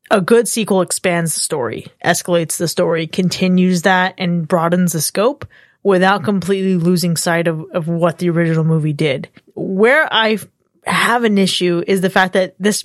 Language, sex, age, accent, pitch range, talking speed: English, female, 20-39, American, 175-210 Hz, 170 wpm